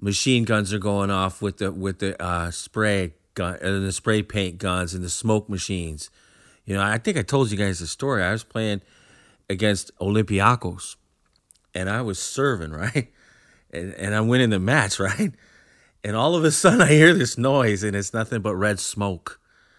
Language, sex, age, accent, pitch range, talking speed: English, male, 30-49, American, 95-125 Hz, 190 wpm